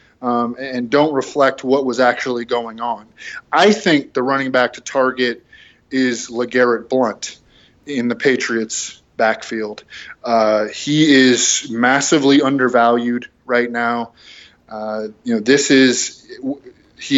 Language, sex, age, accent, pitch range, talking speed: English, male, 20-39, American, 125-155 Hz, 125 wpm